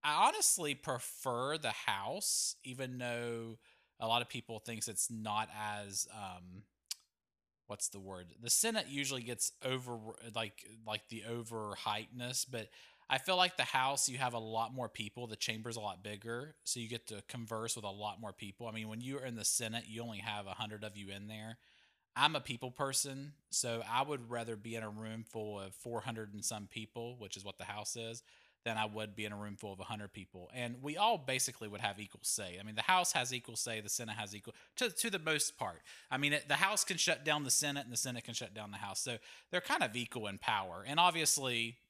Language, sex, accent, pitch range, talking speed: English, male, American, 105-125 Hz, 230 wpm